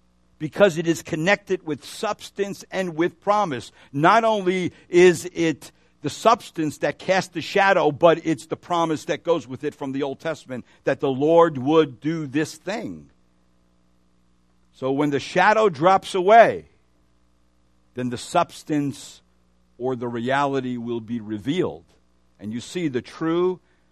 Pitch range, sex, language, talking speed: 110-170 Hz, male, English, 145 wpm